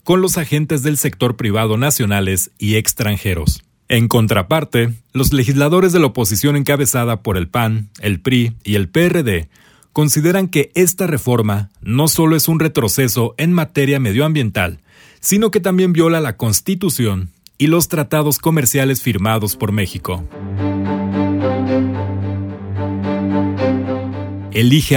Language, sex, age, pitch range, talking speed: Spanish, male, 40-59, 105-155 Hz, 125 wpm